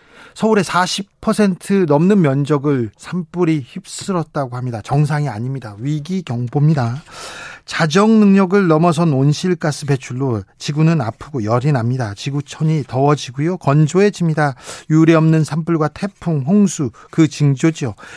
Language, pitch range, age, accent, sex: Korean, 140-185 Hz, 40-59, native, male